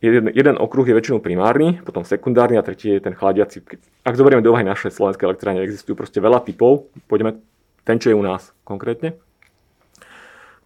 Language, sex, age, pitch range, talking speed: English, male, 30-49, 100-130 Hz, 175 wpm